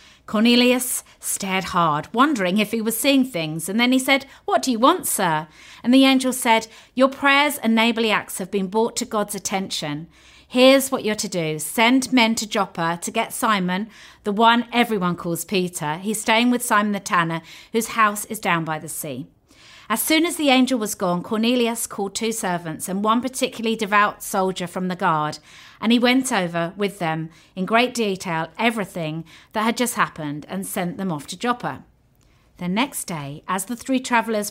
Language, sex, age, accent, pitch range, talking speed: English, female, 40-59, British, 175-245 Hz, 190 wpm